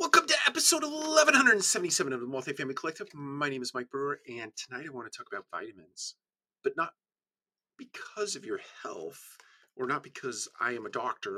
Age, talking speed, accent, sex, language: 40-59, 180 wpm, American, male, English